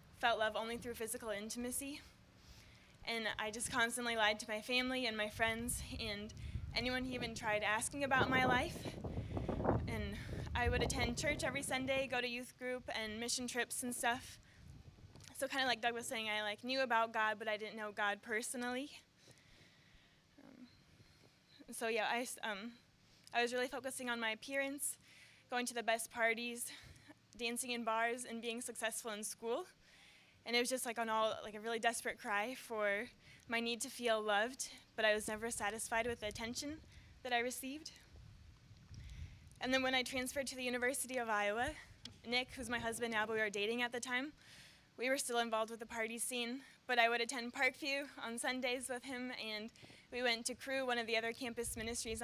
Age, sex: 20-39, female